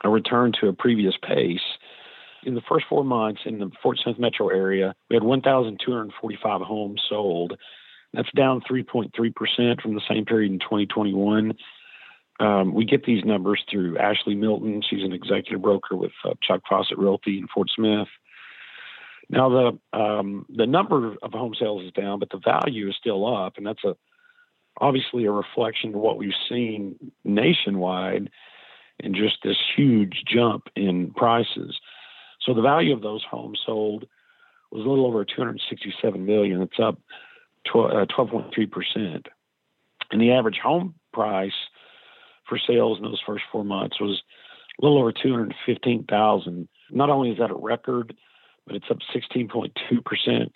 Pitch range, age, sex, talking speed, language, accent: 100-125 Hz, 50-69, male, 150 wpm, English, American